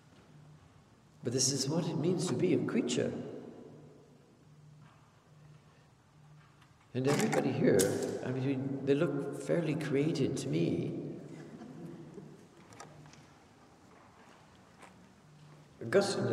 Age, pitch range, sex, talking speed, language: 60-79, 115-145 Hz, male, 80 wpm, English